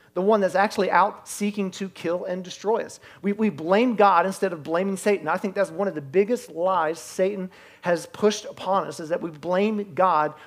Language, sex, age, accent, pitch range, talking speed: English, male, 40-59, American, 155-205 Hz, 210 wpm